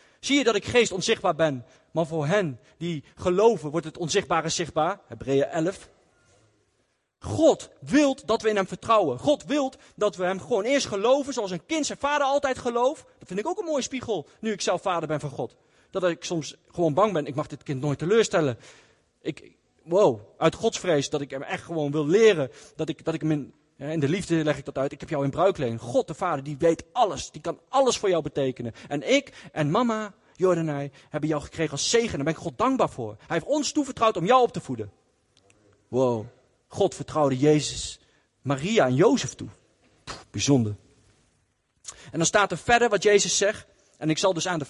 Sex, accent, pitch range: male, Dutch, 140-215 Hz